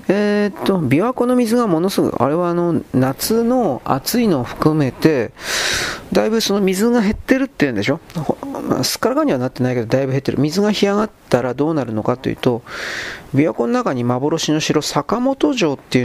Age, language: 40-59, Japanese